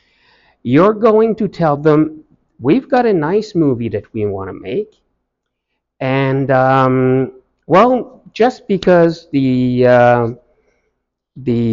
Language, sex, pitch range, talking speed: English, male, 105-170 Hz, 120 wpm